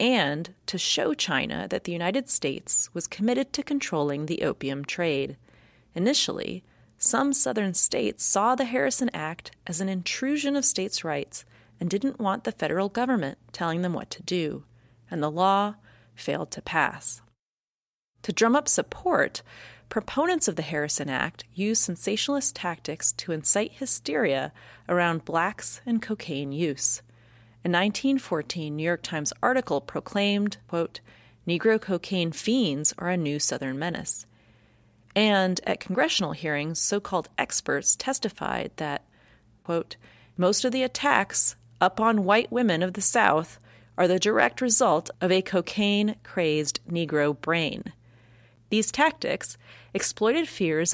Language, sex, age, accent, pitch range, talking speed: English, female, 30-49, American, 145-215 Hz, 135 wpm